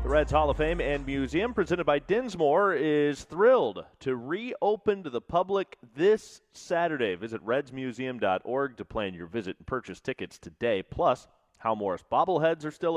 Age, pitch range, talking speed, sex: 30-49, 110-165 Hz, 160 wpm, male